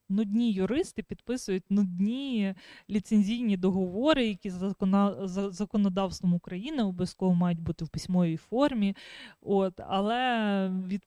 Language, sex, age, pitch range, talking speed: Ukrainian, female, 20-39, 190-230 Hz, 105 wpm